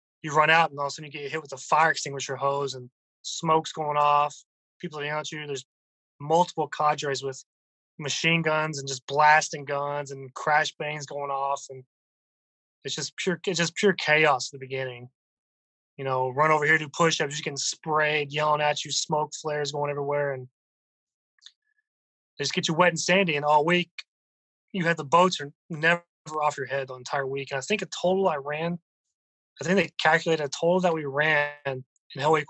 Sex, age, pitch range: male, 20-39, 140-160 Hz